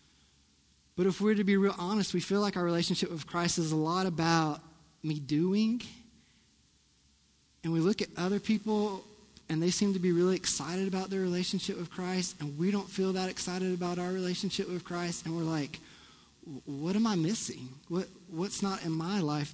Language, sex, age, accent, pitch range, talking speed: English, male, 20-39, American, 165-200 Hz, 190 wpm